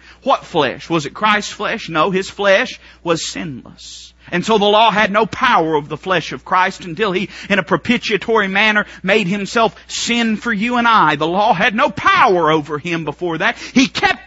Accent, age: American, 40-59